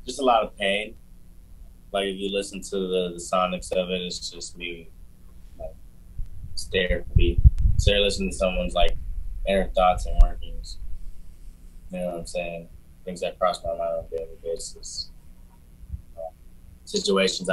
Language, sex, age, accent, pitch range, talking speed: English, male, 20-39, American, 85-95 Hz, 160 wpm